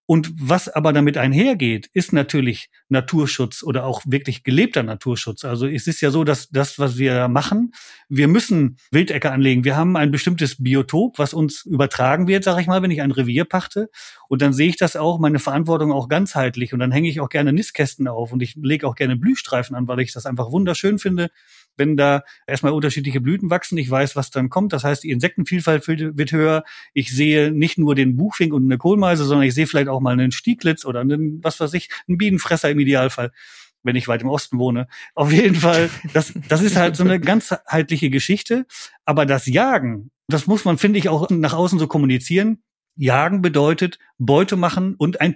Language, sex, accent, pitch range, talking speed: German, male, German, 135-175 Hz, 205 wpm